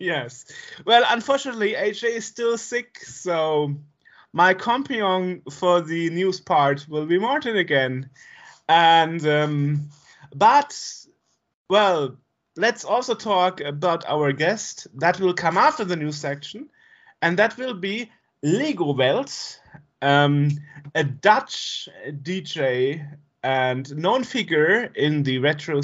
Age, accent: 30-49, German